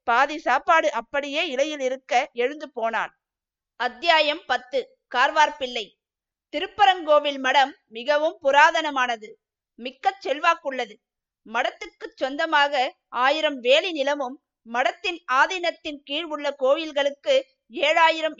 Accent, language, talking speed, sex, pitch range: native, Tamil, 90 wpm, female, 265-325 Hz